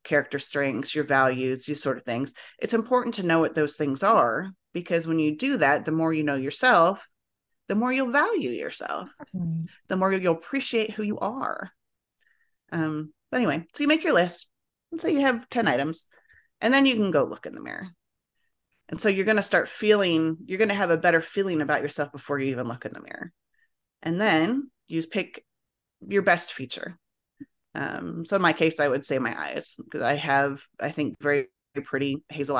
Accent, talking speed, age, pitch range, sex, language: American, 200 wpm, 30-49, 150-200 Hz, female, English